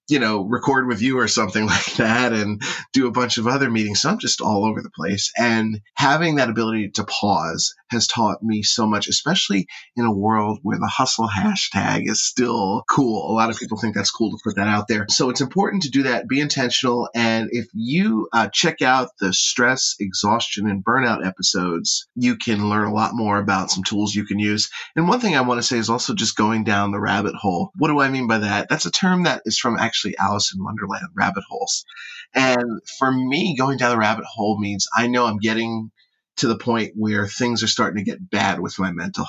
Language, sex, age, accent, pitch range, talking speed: English, male, 30-49, American, 105-135 Hz, 225 wpm